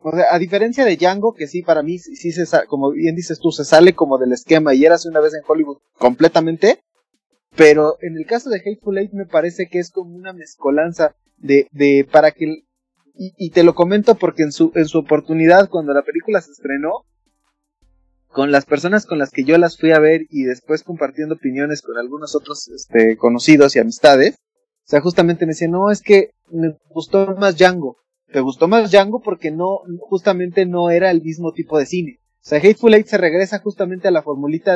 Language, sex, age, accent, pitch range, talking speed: Spanish, male, 30-49, Mexican, 155-200 Hz, 205 wpm